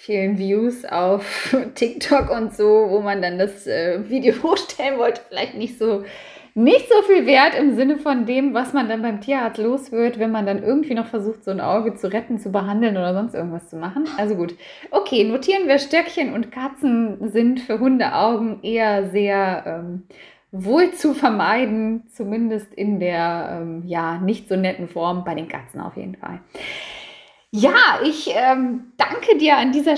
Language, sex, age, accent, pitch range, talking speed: German, female, 20-39, German, 205-265 Hz, 175 wpm